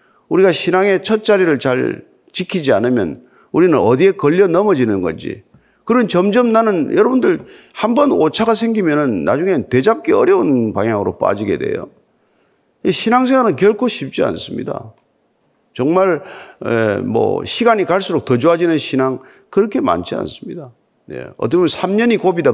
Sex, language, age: male, Korean, 40-59